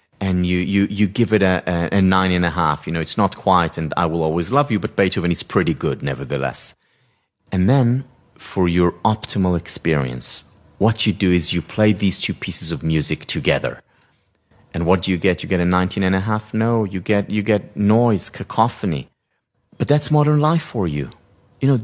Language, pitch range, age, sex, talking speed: English, 95-130 Hz, 30-49, male, 210 wpm